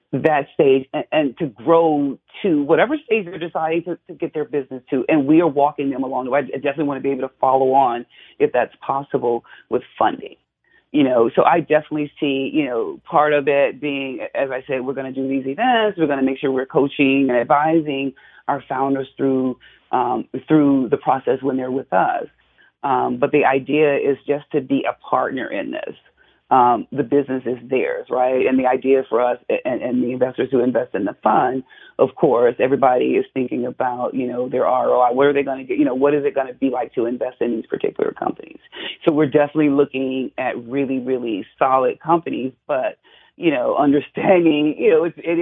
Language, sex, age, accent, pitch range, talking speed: English, female, 40-59, American, 130-160 Hz, 205 wpm